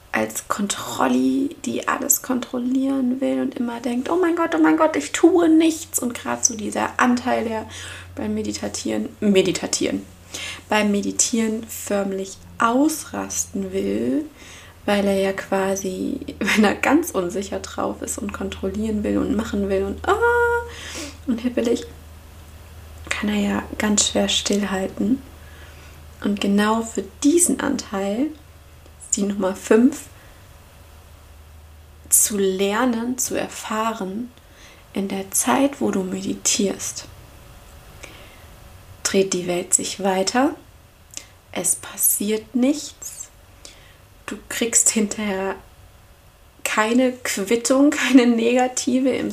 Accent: German